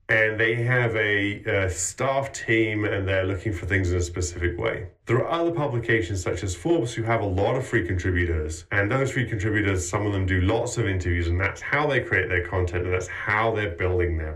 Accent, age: British, 30-49